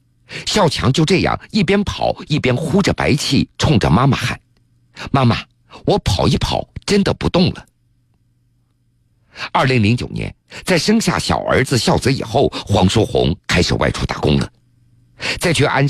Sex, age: male, 50-69